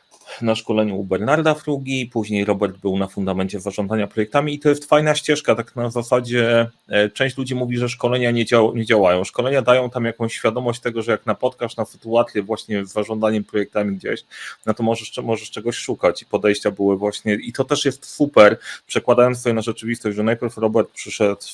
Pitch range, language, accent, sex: 110-130 Hz, Polish, native, male